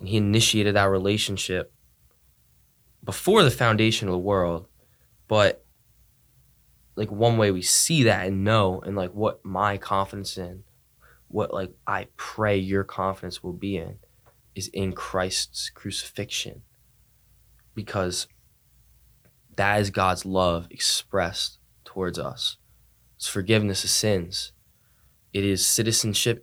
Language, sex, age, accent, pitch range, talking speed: English, male, 20-39, American, 95-110 Hz, 125 wpm